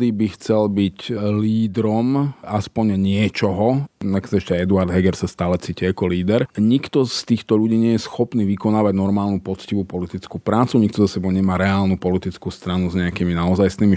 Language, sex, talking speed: Slovak, male, 160 wpm